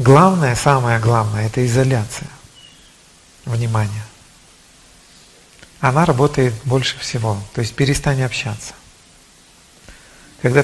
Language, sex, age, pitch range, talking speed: Russian, male, 50-69, 115-145 Hz, 85 wpm